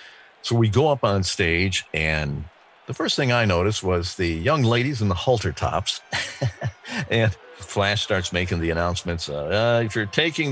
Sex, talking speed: male, 175 wpm